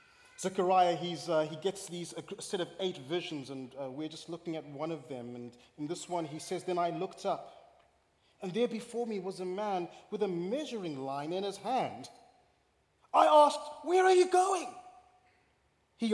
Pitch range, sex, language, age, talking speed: 140-225 Hz, male, English, 30-49, 180 wpm